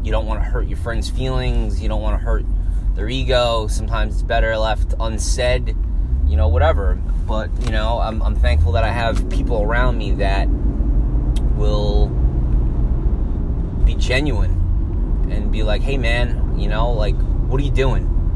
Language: English